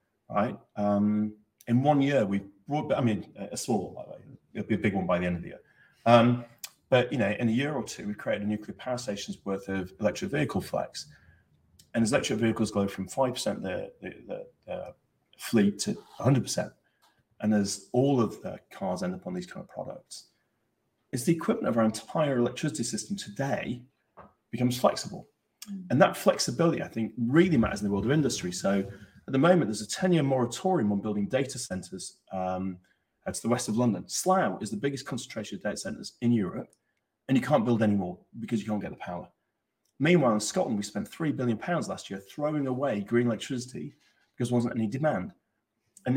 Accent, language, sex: British, English, male